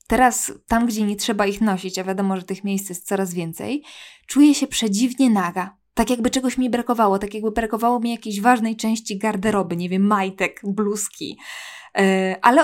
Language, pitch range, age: Polish, 200-255 Hz, 20-39